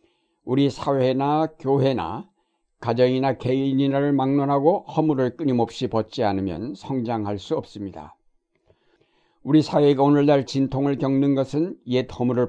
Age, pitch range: 60-79, 115-150 Hz